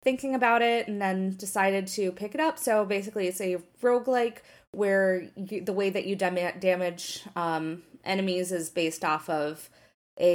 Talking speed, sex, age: 160 wpm, female, 20-39